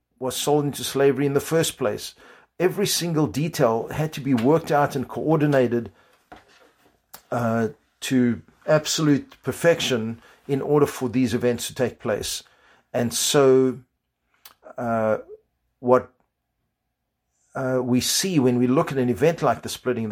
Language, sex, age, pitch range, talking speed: English, male, 50-69, 120-145 Hz, 140 wpm